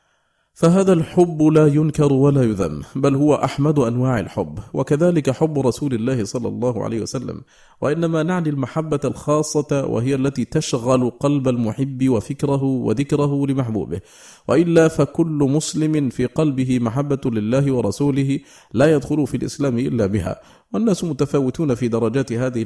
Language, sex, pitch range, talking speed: Arabic, male, 115-145 Hz, 130 wpm